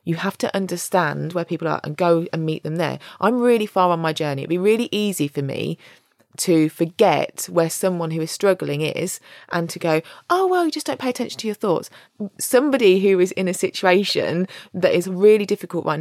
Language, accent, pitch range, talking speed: English, British, 160-195 Hz, 215 wpm